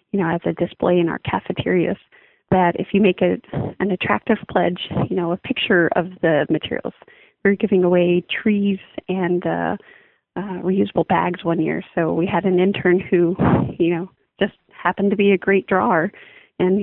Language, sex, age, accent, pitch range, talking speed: English, female, 30-49, American, 180-215 Hz, 175 wpm